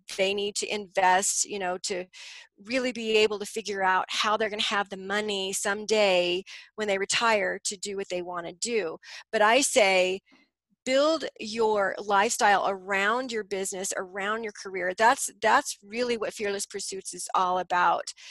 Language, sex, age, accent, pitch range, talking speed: English, female, 40-59, American, 190-225 Hz, 170 wpm